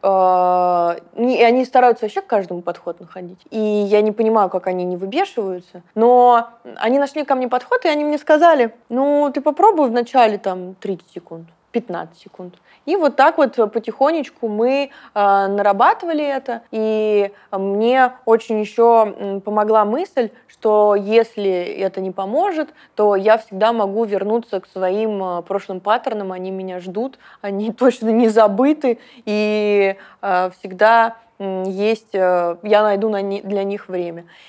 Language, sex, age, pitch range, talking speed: Russian, female, 20-39, 195-245 Hz, 135 wpm